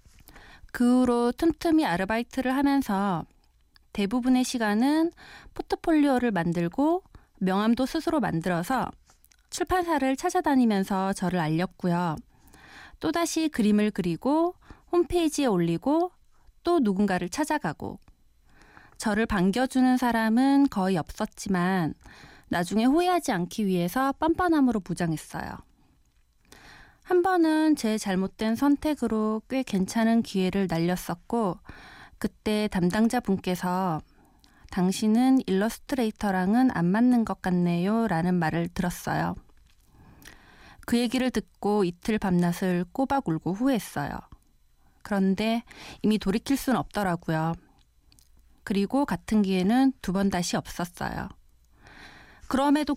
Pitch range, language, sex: 180-265 Hz, Korean, female